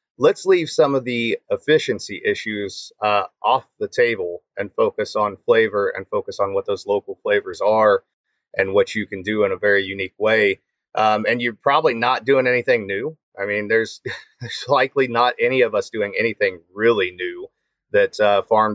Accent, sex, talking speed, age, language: American, male, 180 wpm, 30-49, English